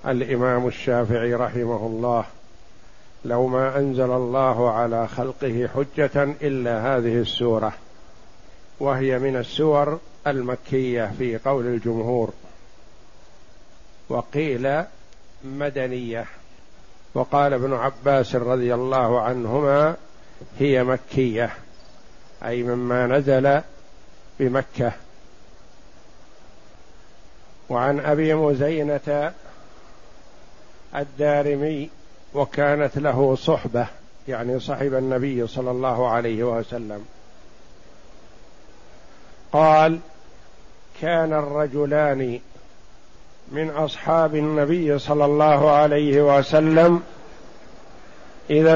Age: 60-79